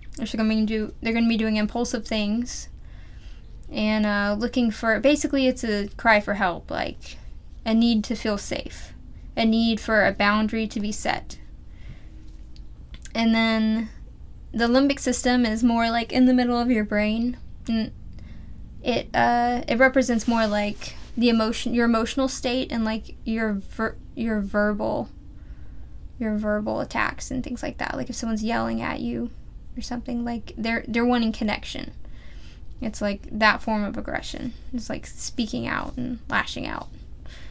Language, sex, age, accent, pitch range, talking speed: English, female, 10-29, American, 210-240 Hz, 160 wpm